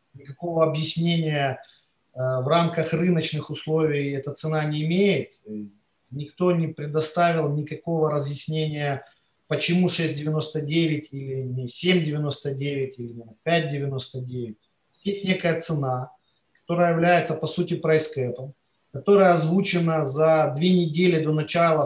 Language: Ukrainian